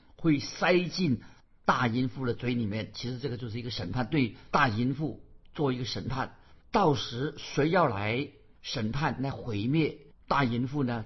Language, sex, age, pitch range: Chinese, male, 50-69, 120-150 Hz